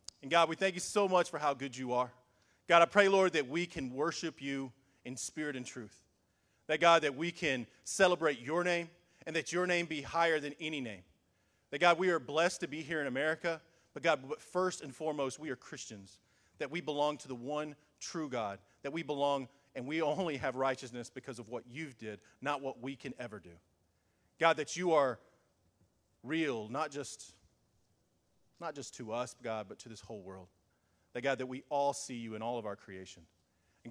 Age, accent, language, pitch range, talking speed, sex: 40-59, American, English, 115-155 Hz, 205 wpm, male